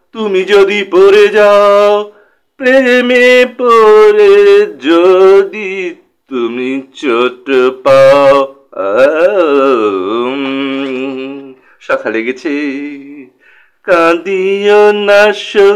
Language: Bengali